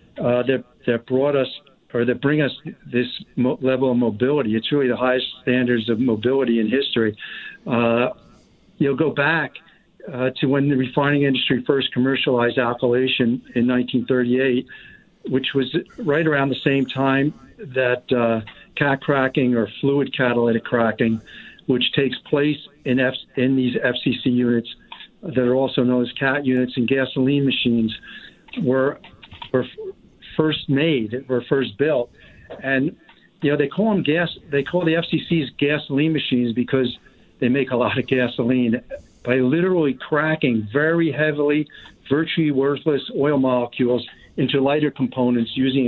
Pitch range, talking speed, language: 125-145 Hz, 150 wpm, English